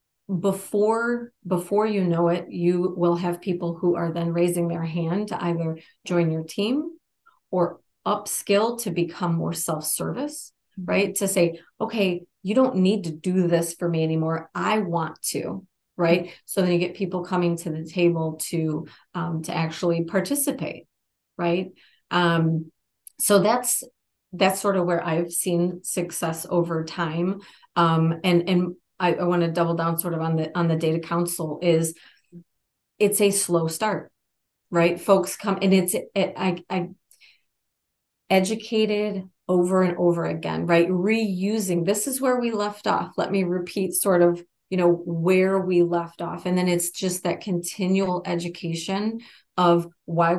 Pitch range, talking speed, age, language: 170-190 Hz, 160 wpm, 30-49, English